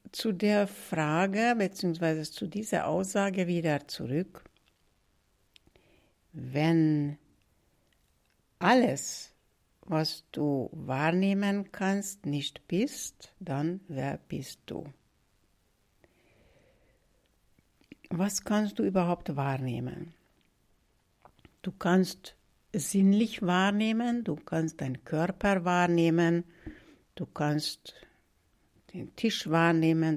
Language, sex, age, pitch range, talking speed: German, female, 60-79, 145-195 Hz, 80 wpm